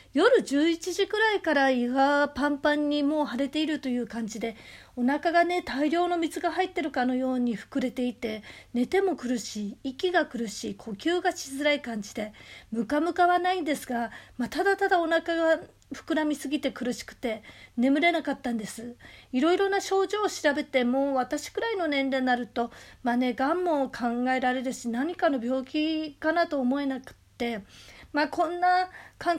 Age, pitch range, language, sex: 40-59, 255-355 Hz, Japanese, female